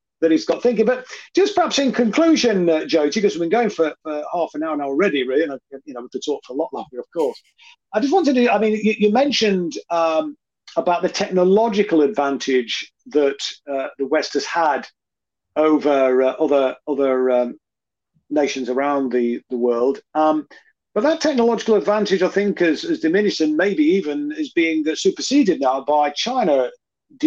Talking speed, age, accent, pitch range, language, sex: 190 wpm, 40-59, British, 150-245 Hz, English, male